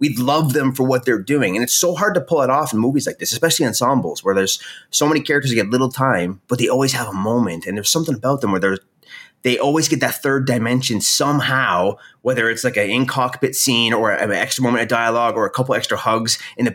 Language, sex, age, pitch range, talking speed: English, male, 30-49, 105-145 Hz, 255 wpm